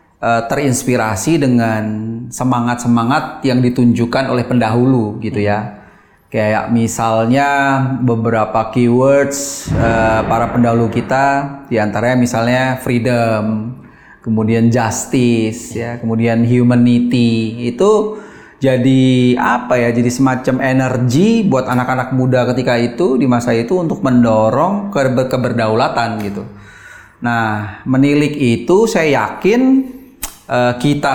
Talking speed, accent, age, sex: 100 wpm, native, 30-49, male